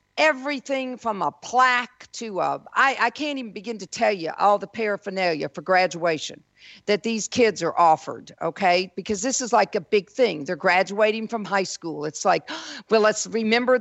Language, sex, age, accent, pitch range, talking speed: English, female, 50-69, American, 195-250 Hz, 175 wpm